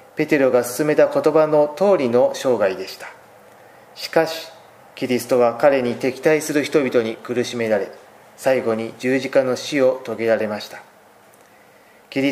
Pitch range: 110-140 Hz